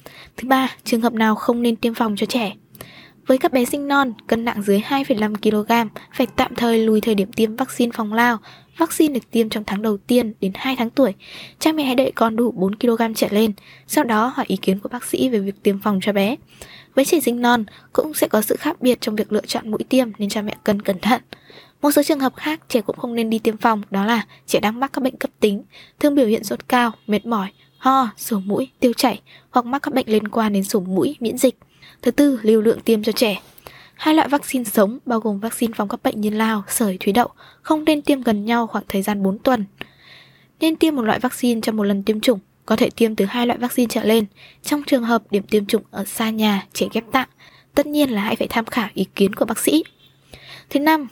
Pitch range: 215-260 Hz